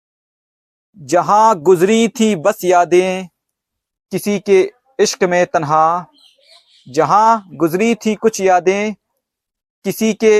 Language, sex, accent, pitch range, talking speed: Hindi, male, native, 175-210 Hz, 100 wpm